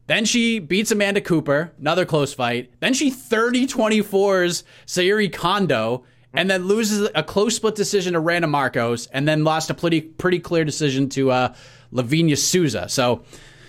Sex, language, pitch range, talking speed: male, English, 130-180 Hz, 160 wpm